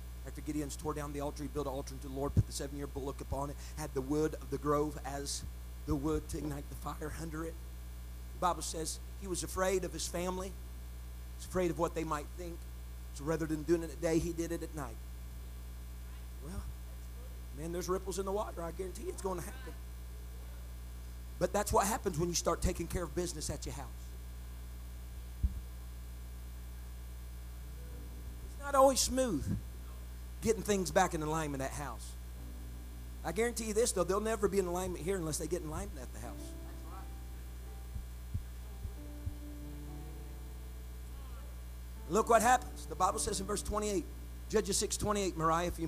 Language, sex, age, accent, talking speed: English, male, 40-59, American, 175 wpm